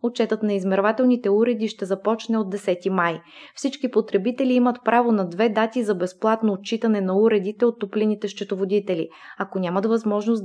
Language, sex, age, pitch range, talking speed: Bulgarian, female, 20-39, 200-235 Hz, 155 wpm